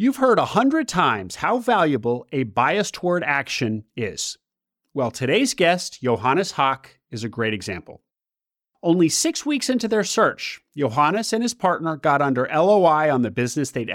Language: English